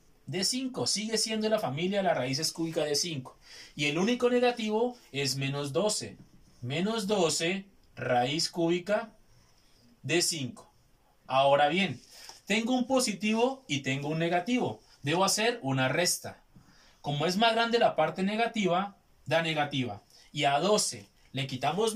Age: 30-49